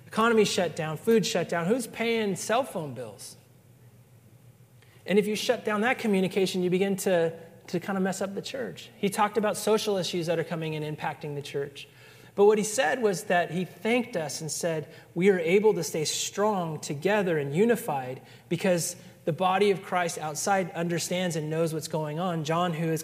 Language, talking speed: English, 195 wpm